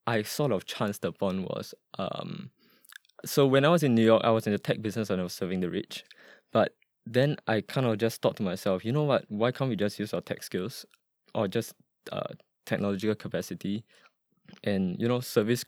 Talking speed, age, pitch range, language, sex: 210 wpm, 20-39, 95-115 Hz, English, male